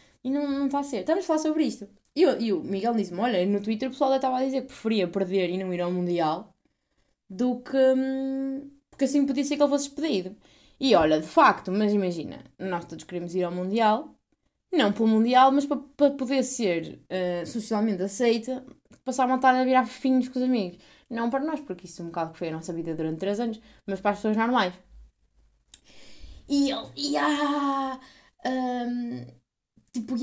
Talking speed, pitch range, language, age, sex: 200 wpm, 195-280 Hz, Portuguese, 20-39, female